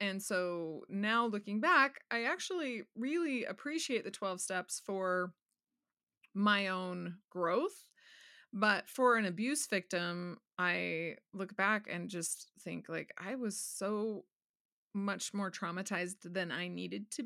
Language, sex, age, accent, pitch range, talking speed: English, female, 20-39, American, 185-235 Hz, 130 wpm